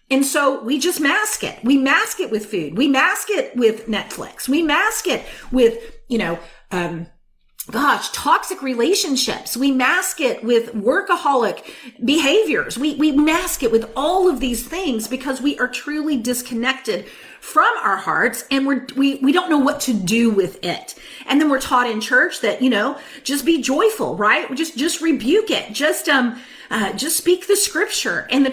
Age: 40-59